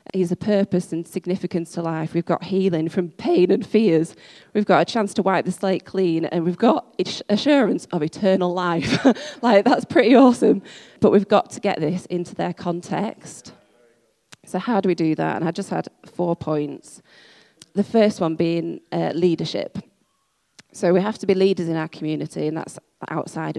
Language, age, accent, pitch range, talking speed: English, 20-39, British, 160-195 Hz, 185 wpm